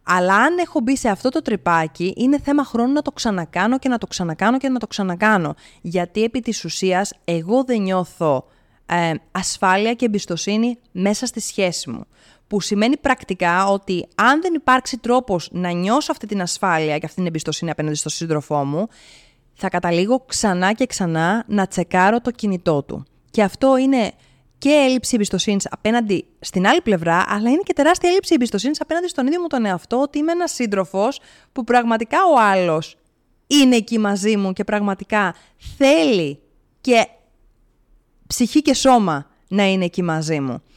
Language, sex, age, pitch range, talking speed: Greek, female, 20-39, 185-255 Hz, 170 wpm